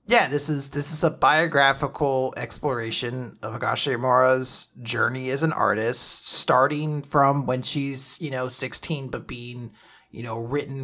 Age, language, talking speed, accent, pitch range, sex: 30-49, English, 145 wpm, American, 120-150 Hz, male